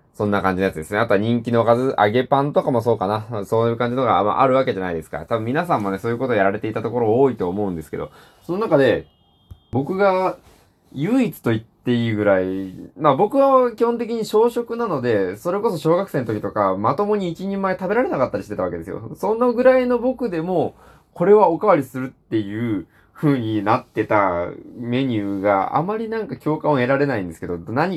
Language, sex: Japanese, male